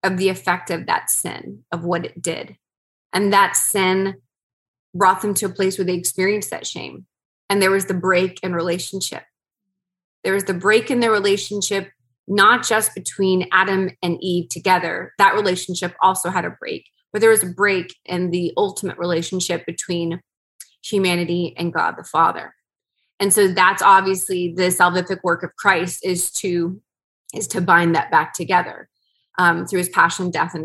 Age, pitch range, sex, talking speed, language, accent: 20-39, 180-210 Hz, female, 170 wpm, English, American